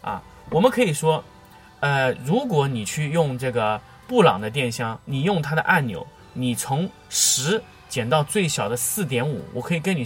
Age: 20-39